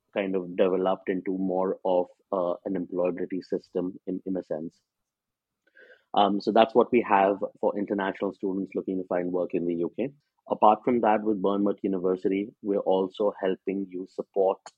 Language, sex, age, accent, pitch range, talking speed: English, male, 30-49, Indian, 90-105 Hz, 165 wpm